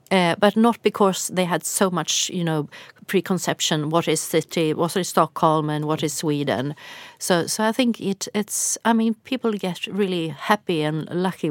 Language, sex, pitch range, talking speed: Swedish, female, 160-210 Hz, 180 wpm